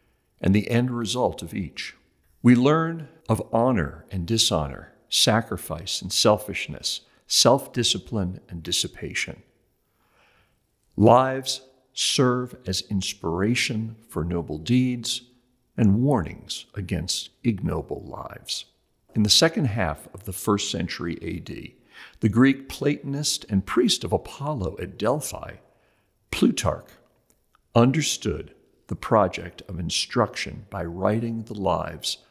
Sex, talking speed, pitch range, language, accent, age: male, 110 wpm, 95-130 Hz, English, American, 50-69